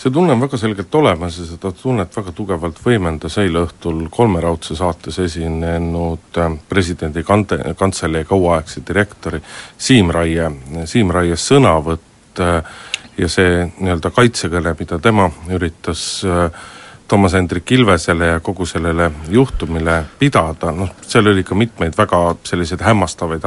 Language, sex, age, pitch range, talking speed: Finnish, male, 50-69, 85-100 Hz, 115 wpm